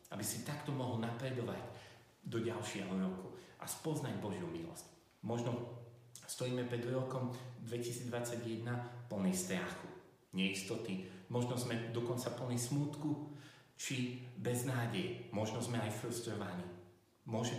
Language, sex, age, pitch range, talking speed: Slovak, male, 40-59, 100-125 Hz, 110 wpm